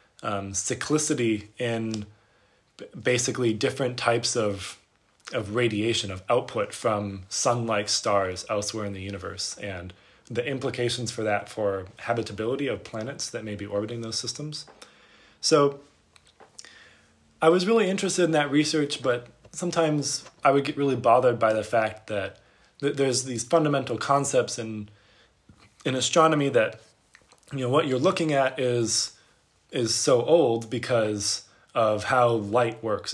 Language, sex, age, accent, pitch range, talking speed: English, male, 20-39, American, 105-140 Hz, 145 wpm